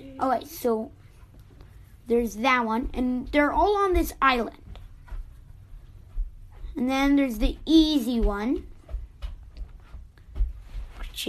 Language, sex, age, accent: English, female, 20-39, American